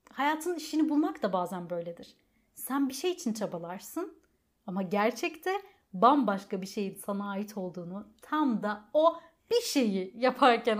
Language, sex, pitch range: Turkish, female, 190-270 Hz